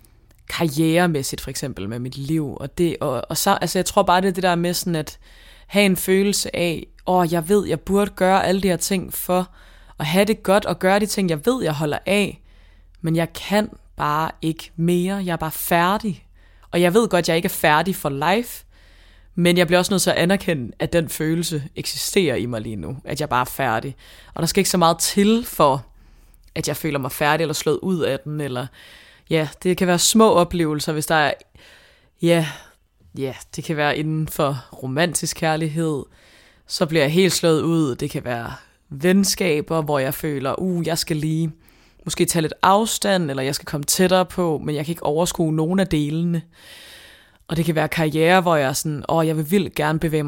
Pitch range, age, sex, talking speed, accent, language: 150-180 Hz, 20-39, female, 215 wpm, native, Danish